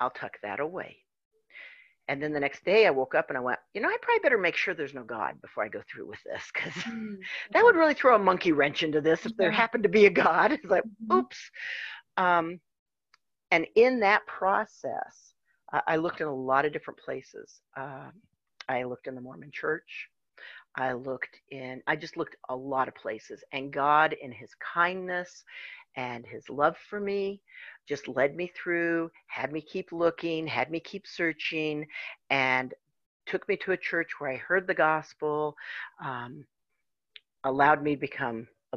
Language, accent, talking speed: English, American, 185 wpm